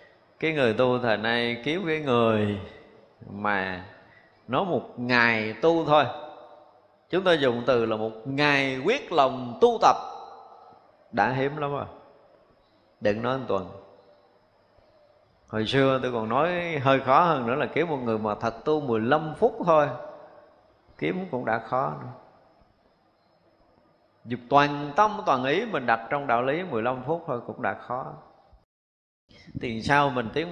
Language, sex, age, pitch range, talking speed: Vietnamese, male, 20-39, 110-155 Hz, 150 wpm